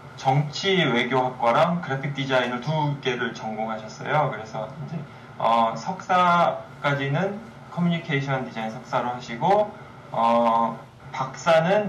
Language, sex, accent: Korean, male, native